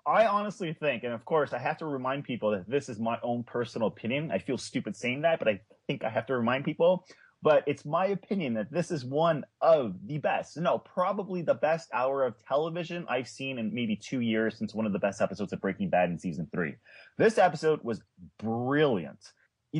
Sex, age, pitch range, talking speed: male, 30-49, 115-175 Hz, 220 wpm